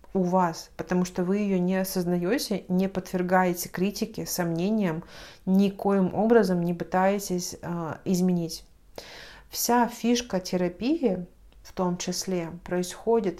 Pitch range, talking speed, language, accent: 180-205 Hz, 110 wpm, Russian, native